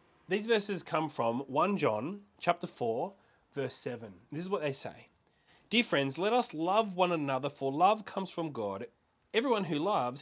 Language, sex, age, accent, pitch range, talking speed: English, male, 30-49, Australian, 125-175 Hz, 175 wpm